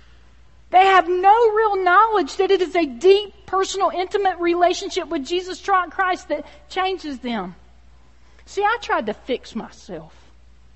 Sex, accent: female, American